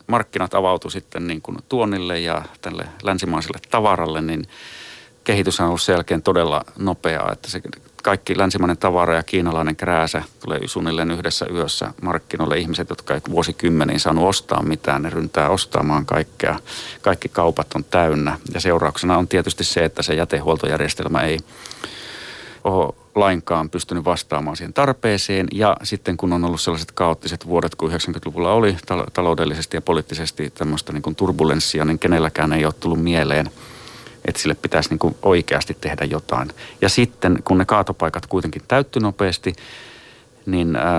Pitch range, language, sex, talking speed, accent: 80-95 Hz, Finnish, male, 145 wpm, native